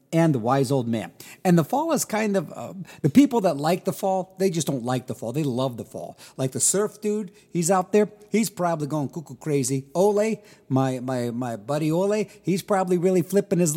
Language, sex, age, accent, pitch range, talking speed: English, male, 50-69, American, 135-185 Hz, 220 wpm